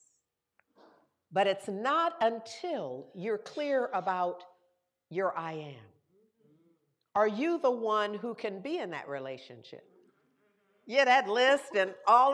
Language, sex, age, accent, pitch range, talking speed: English, female, 50-69, American, 205-305 Hz, 120 wpm